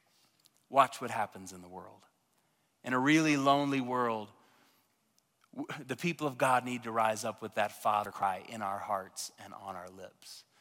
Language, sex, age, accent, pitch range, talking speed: English, male, 30-49, American, 115-145 Hz, 170 wpm